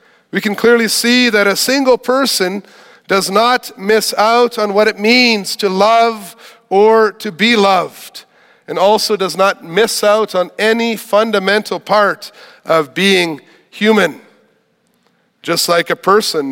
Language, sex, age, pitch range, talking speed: English, male, 40-59, 180-230 Hz, 140 wpm